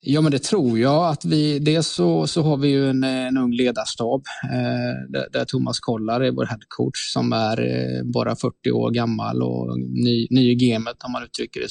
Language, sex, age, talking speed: Swedish, male, 20-39, 195 wpm